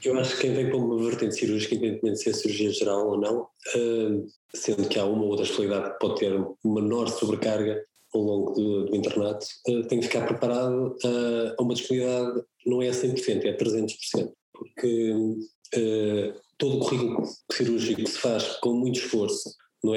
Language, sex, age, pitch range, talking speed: Portuguese, male, 20-39, 105-120 Hz, 175 wpm